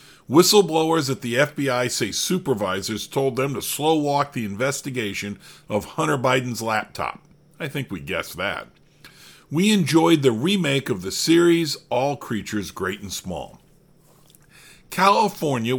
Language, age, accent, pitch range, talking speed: English, 50-69, American, 120-165 Hz, 135 wpm